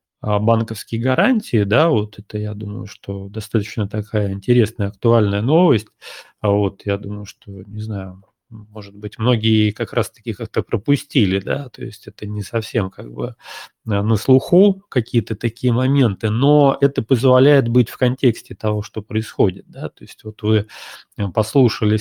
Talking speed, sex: 150 wpm, male